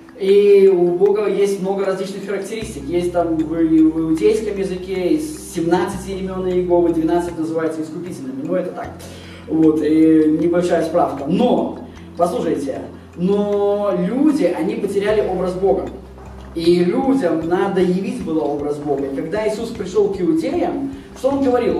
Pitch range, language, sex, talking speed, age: 170-205 Hz, Russian, male, 140 wpm, 20-39